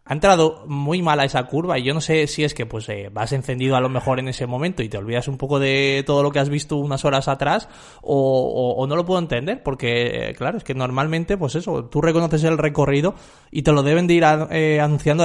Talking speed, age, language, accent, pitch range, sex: 260 wpm, 20-39, Spanish, Spanish, 140-160 Hz, male